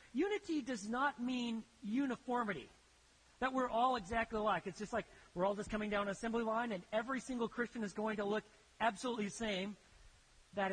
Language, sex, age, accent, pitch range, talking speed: English, male, 40-59, American, 175-240 Hz, 185 wpm